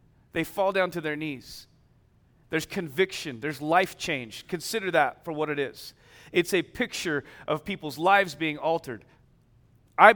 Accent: American